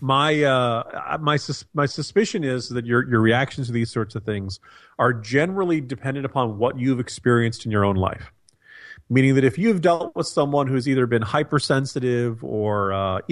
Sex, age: male, 40-59